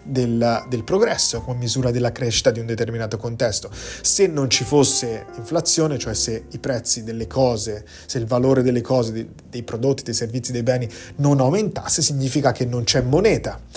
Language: Italian